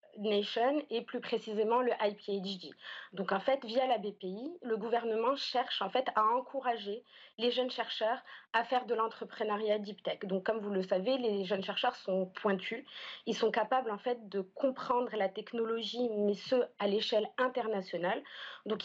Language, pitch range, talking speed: French, 210-250 Hz, 170 wpm